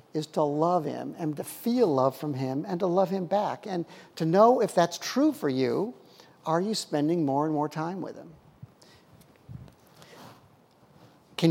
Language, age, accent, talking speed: English, 50-69, American, 170 wpm